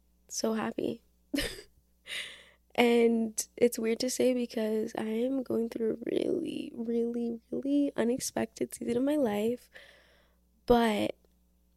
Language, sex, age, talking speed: English, female, 20-39, 105 wpm